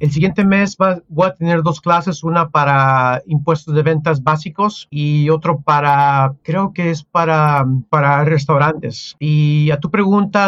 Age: 40-59